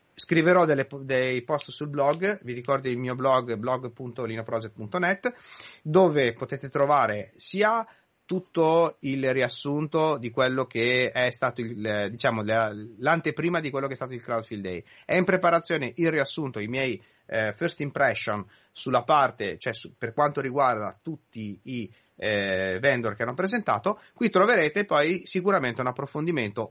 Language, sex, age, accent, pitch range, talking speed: Italian, male, 30-49, native, 125-175 Hz, 145 wpm